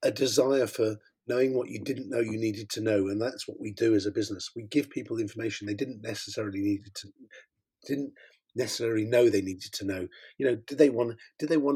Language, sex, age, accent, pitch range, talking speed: English, male, 40-59, British, 110-140 Hz, 225 wpm